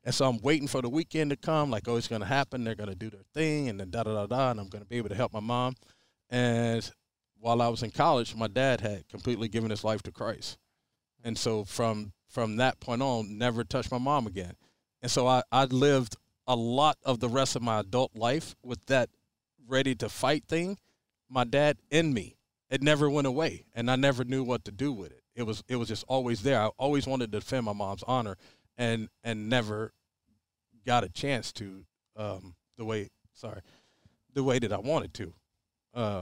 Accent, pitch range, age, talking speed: American, 105-130 Hz, 40-59, 215 wpm